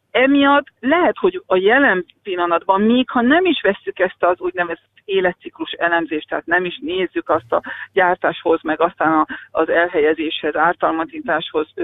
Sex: female